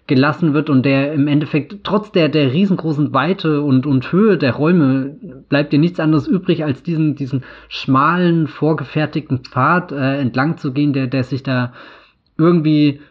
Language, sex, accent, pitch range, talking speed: German, male, German, 130-155 Hz, 165 wpm